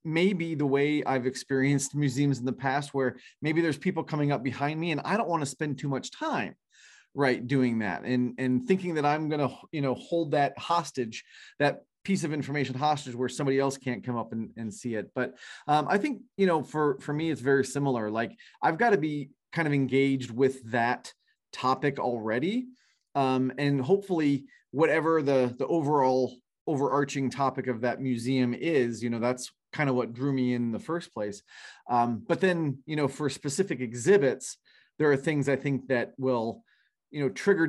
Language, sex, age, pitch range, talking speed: English, male, 30-49, 125-150 Hz, 195 wpm